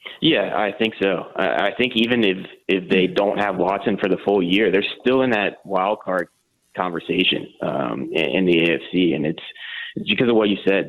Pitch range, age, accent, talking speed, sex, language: 90-100 Hz, 20-39, American, 195 wpm, male, English